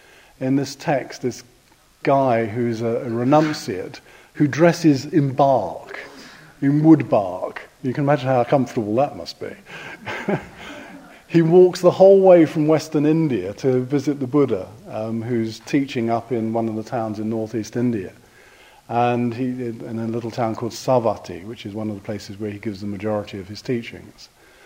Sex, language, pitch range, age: male, English, 110-135 Hz, 50-69